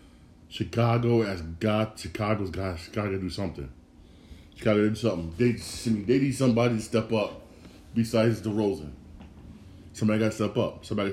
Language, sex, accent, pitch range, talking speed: English, male, American, 85-125 Hz, 160 wpm